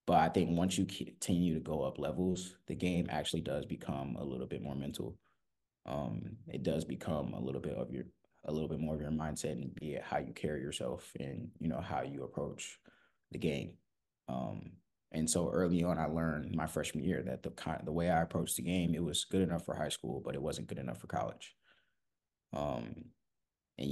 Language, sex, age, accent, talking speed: English, male, 20-39, American, 215 wpm